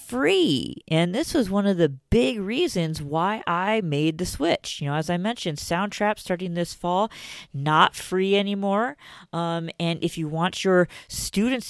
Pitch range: 150-205 Hz